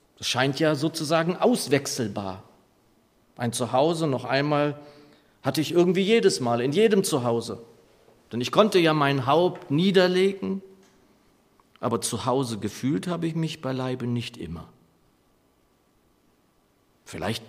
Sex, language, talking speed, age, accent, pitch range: male, German, 120 wpm, 40-59, German, 120-170 Hz